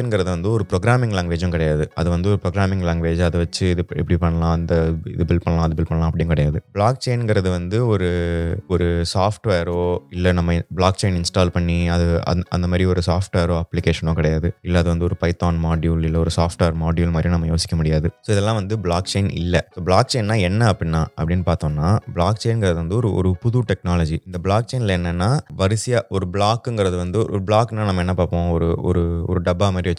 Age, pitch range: 20-39, 85-105 Hz